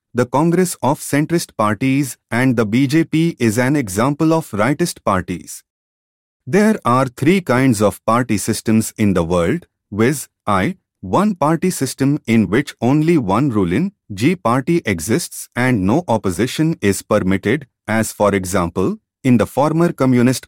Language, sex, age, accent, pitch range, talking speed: English, male, 30-49, Indian, 105-155 Hz, 145 wpm